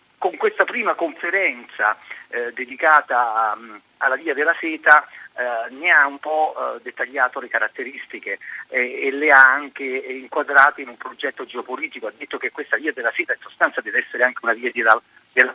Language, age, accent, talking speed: Italian, 40-59, native, 175 wpm